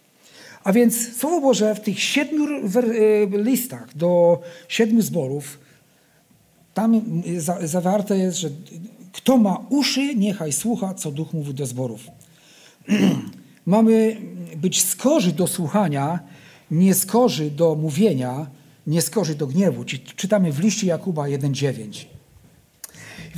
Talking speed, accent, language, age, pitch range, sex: 115 wpm, native, Polish, 50-69, 170-230 Hz, male